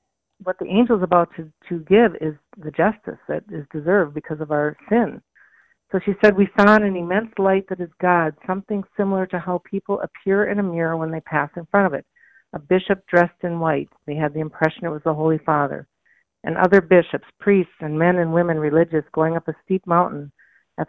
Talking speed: 215 wpm